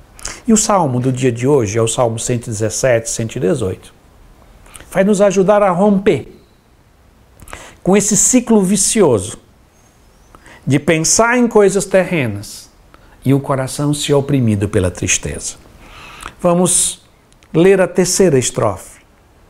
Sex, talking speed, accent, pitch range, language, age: male, 115 wpm, Brazilian, 135-210 Hz, Portuguese, 60-79